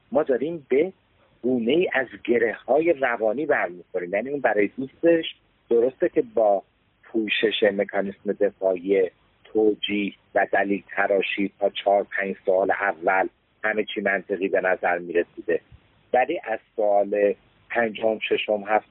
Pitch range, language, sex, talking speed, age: 105-165 Hz, Persian, male, 125 wpm, 50-69